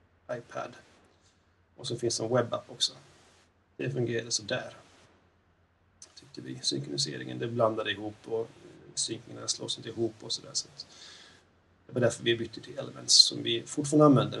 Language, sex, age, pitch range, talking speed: Swedish, male, 30-49, 90-125 Hz, 150 wpm